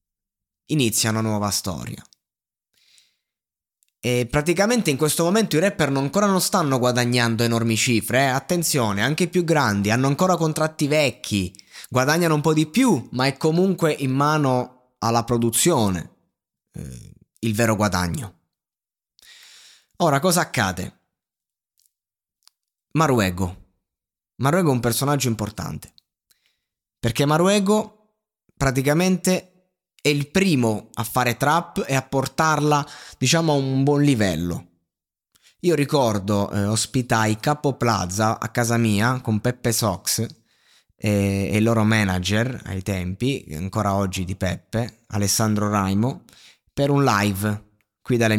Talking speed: 125 wpm